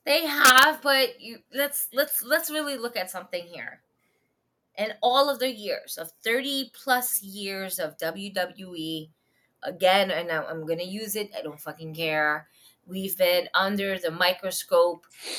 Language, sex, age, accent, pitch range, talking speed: English, female, 20-39, American, 180-235 Hz, 150 wpm